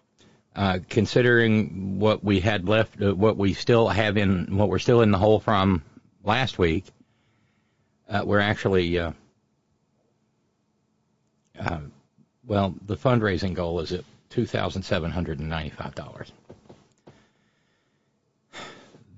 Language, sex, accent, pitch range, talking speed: English, male, American, 80-110 Hz, 105 wpm